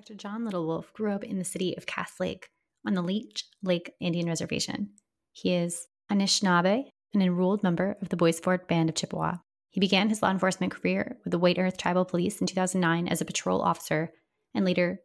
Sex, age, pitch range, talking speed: female, 20-39, 170-195 Hz, 200 wpm